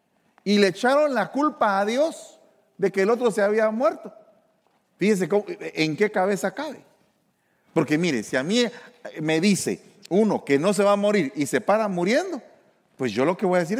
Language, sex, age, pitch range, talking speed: English, male, 40-59, 145-220 Hz, 190 wpm